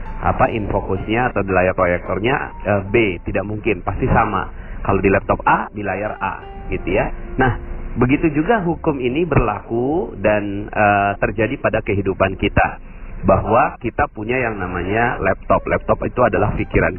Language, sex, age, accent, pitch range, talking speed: Indonesian, male, 40-59, native, 100-135 Hz, 150 wpm